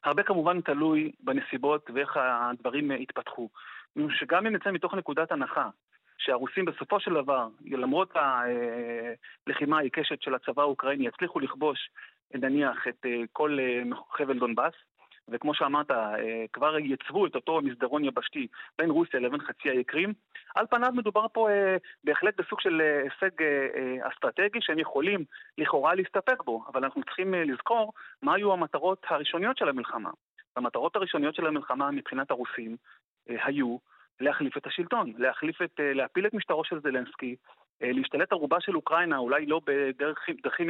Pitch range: 130-195 Hz